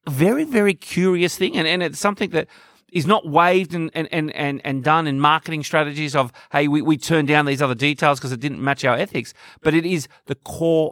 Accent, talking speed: Australian, 220 wpm